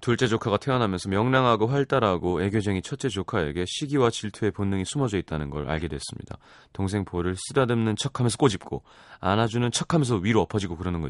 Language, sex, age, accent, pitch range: Korean, male, 30-49, native, 95-135 Hz